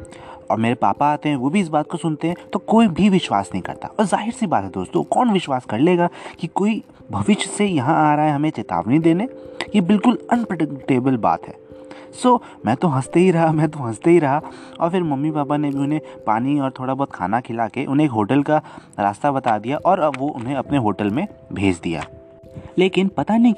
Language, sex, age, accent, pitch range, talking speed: Hindi, male, 30-49, native, 125-185 Hz, 220 wpm